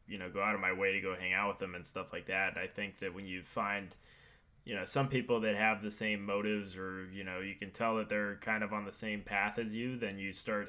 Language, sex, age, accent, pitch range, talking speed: English, male, 20-39, American, 95-110 Hz, 285 wpm